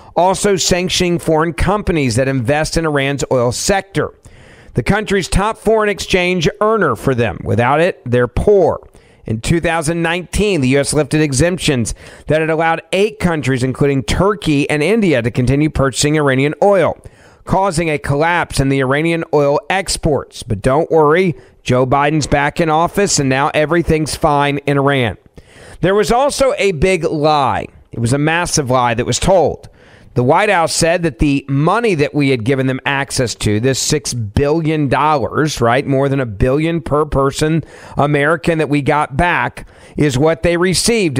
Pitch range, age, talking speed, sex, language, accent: 135-170 Hz, 40-59, 160 wpm, male, English, American